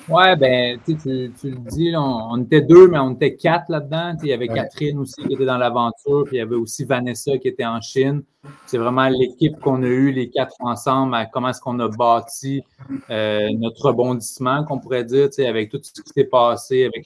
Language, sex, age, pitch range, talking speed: French, male, 20-39, 130-160 Hz, 220 wpm